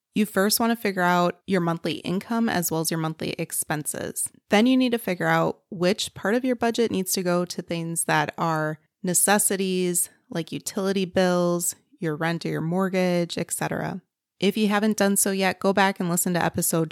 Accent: American